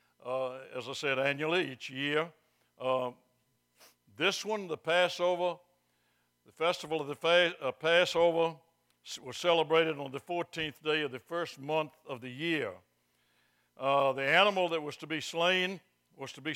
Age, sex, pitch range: 60-79, male, 125-160 Hz